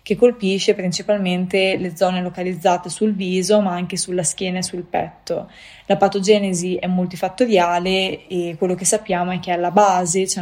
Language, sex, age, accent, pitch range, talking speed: Italian, female, 20-39, native, 180-200 Hz, 160 wpm